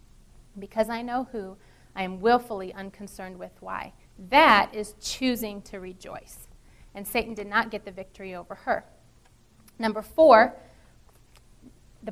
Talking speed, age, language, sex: 135 wpm, 30-49, English, female